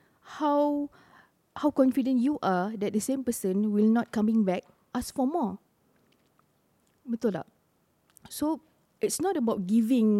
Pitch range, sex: 205-330 Hz, female